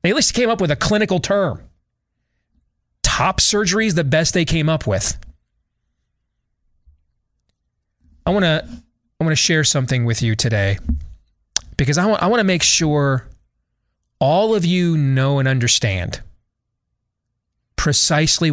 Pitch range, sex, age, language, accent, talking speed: 110-155 Hz, male, 30-49, English, American, 140 wpm